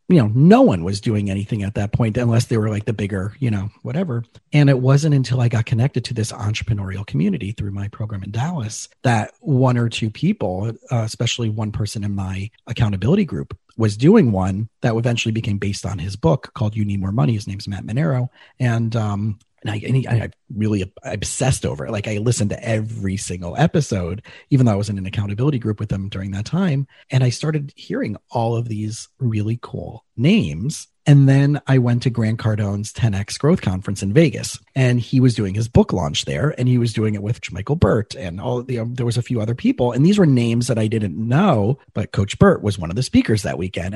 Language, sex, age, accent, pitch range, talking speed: English, male, 30-49, American, 105-130 Hz, 225 wpm